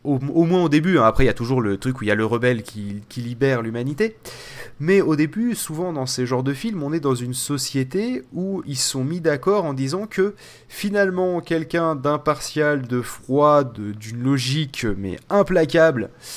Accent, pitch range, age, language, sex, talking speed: French, 125-165 Hz, 30-49, French, male, 200 wpm